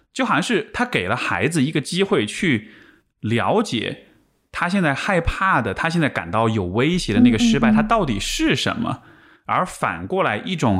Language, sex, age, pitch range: Chinese, male, 20-39, 110-180 Hz